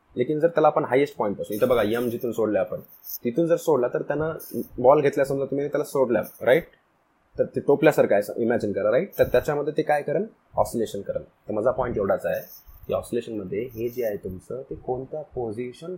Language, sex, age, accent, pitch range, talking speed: Hindi, male, 20-39, native, 130-200 Hz, 100 wpm